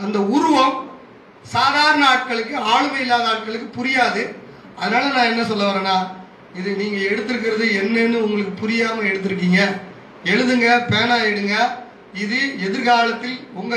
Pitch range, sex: 200-240 Hz, male